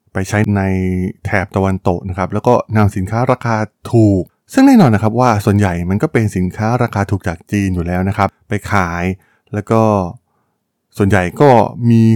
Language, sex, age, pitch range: Thai, male, 20-39, 95-120 Hz